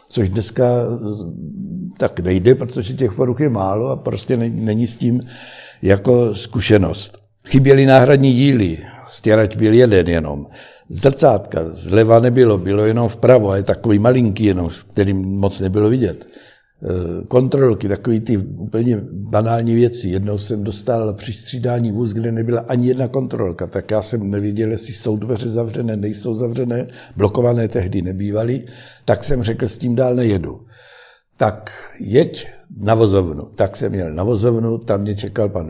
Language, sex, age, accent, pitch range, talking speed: Czech, male, 60-79, native, 100-120 Hz, 150 wpm